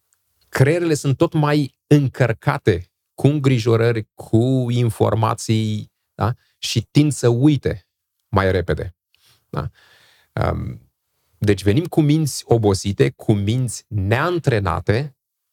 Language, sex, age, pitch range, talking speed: Romanian, male, 30-49, 100-140 Hz, 95 wpm